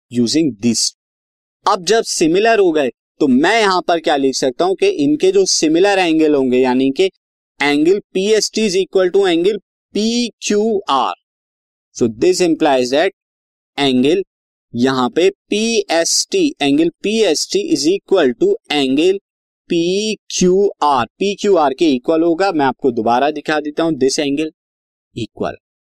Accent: native